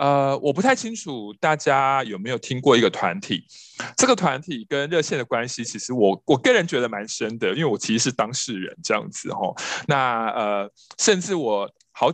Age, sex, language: 20-39, male, Chinese